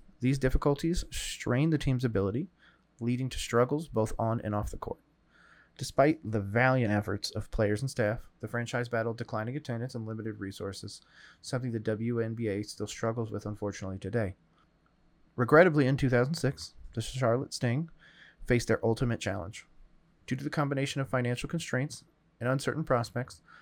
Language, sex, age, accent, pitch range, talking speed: English, male, 30-49, American, 115-140 Hz, 150 wpm